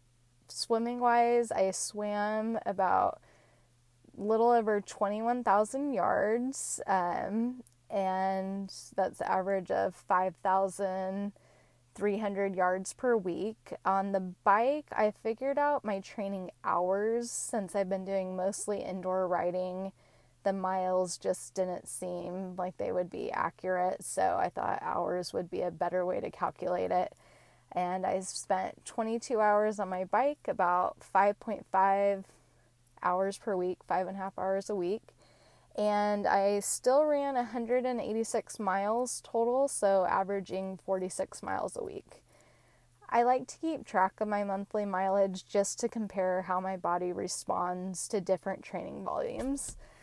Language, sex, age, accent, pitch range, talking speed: English, female, 20-39, American, 185-220 Hz, 130 wpm